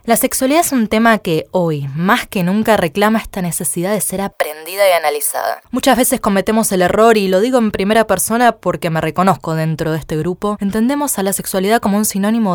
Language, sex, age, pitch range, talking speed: Spanish, female, 20-39, 160-230 Hz, 205 wpm